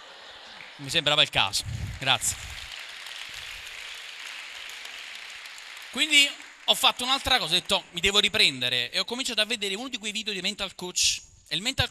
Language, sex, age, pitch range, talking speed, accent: Italian, male, 30-49, 125-190 Hz, 150 wpm, native